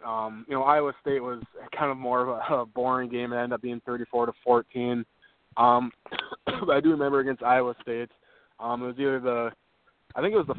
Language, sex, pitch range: English, male, 115-130 Hz